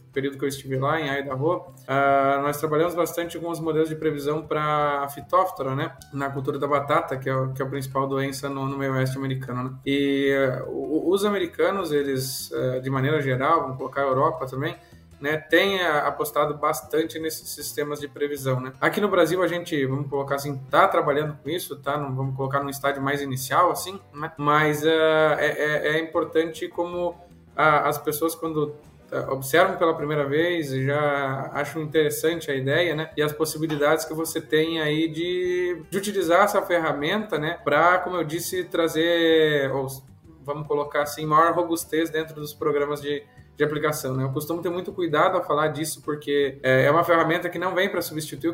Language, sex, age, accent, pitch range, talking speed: Portuguese, male, 20-39, Brazilian, 140-160 Hz, 190 wpm